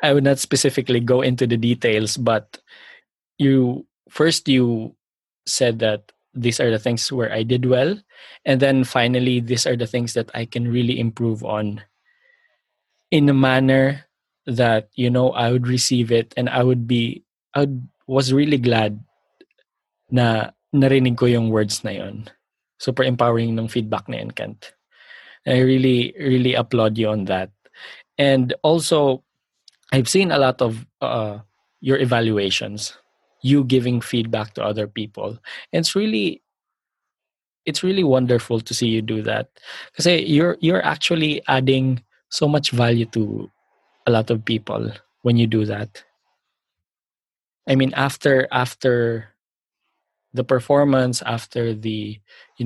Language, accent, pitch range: Filipino, native, 115-135 Hz